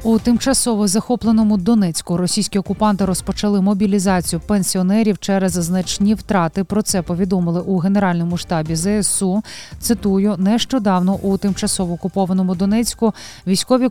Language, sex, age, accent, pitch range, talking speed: Ukrainian, female, 20-39, native, 175-205 Hz, 110 wpm